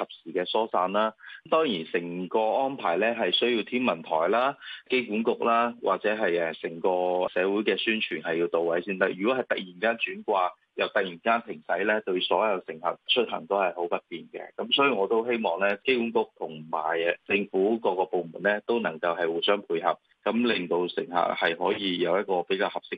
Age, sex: 20-39, male